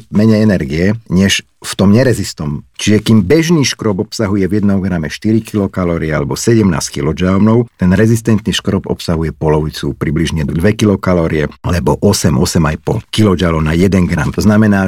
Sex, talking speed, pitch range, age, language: male, 140 wpm, 85-110 Hz, 50-69, Slovak